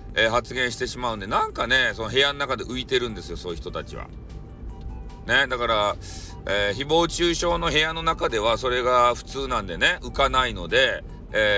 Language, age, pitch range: Japanese, 40-59, 105-155 Hz